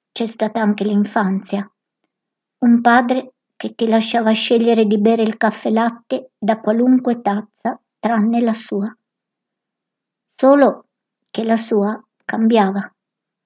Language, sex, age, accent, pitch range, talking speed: Italian, male, 60-79, native, 215-250 Hz, 115 wpm